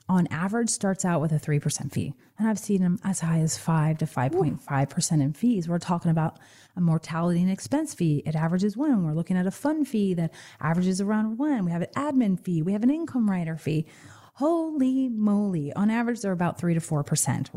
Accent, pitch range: American, 165-240 Hz